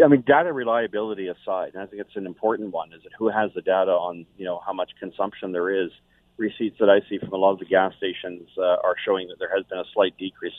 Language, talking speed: English, 265 wpm